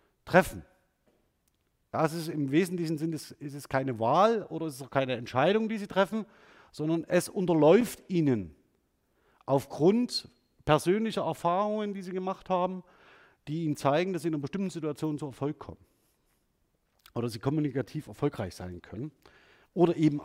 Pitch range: 125-180 Hz